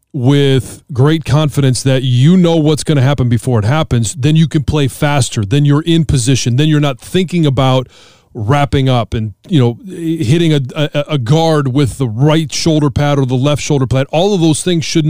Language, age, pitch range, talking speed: English, 30-49, 125-150 Hz, 205 wpm